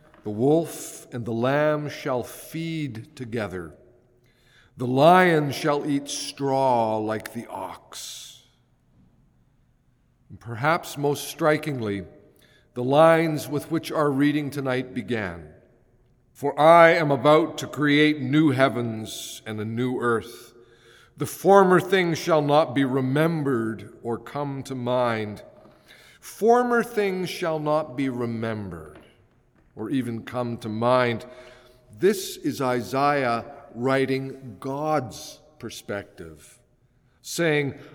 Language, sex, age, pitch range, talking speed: English, male, 50-69, 120-160 Hz, 110 wpm